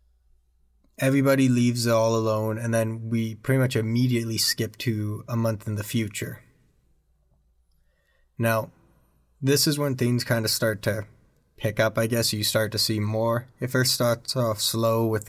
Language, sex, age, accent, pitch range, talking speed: English, male, 20-39, American, 110-120 Hz, 165 wpm